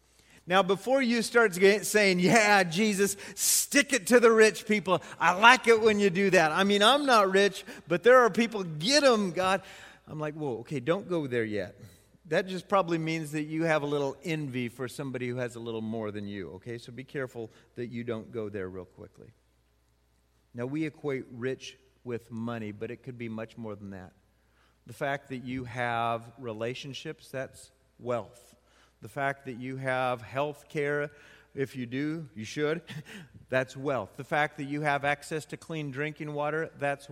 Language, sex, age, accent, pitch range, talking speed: English, male, 40-59, American, 125-185 Hz, 190 wpm